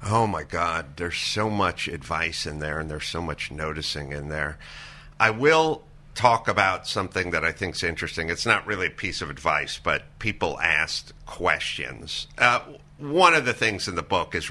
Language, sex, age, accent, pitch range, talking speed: English, male, 50-69, American, 90-125 Hz, 190 wpm